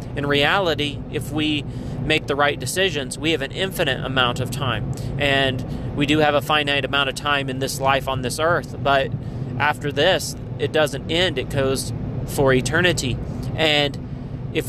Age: 30-49